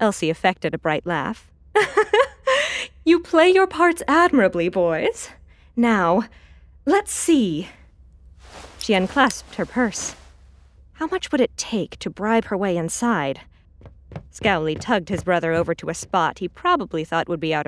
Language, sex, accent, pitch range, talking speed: English, female, American, 160-255 Hz, 145 wpm